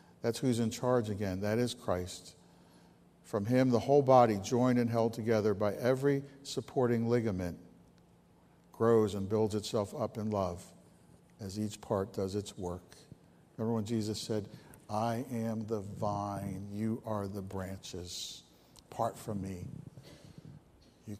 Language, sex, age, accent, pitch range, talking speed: English, male, 60-79, American, 110-150 Hz, 140 wpm